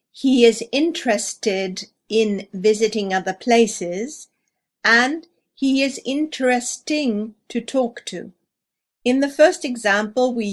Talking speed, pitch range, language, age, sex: 110 wpm, 210-265 Hz, English, 50-69, female